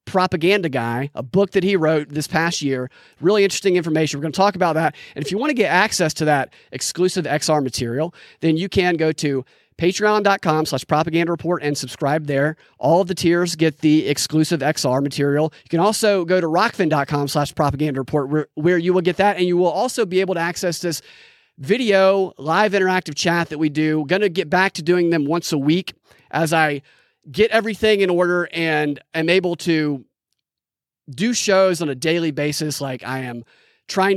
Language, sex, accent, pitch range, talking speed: English, male, American, 145-185 Hz, 195 wpm